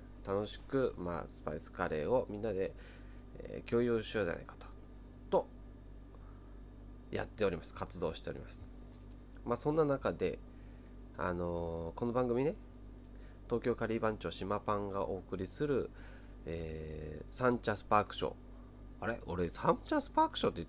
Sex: male